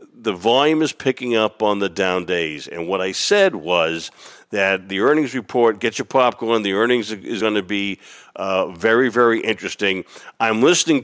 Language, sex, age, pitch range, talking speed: English, male, 50-69, 100-125 Hz, 180 wpm